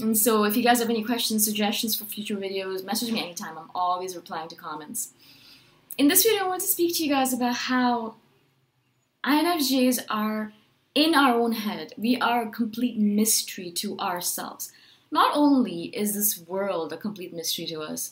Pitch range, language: 170-235 Hz, English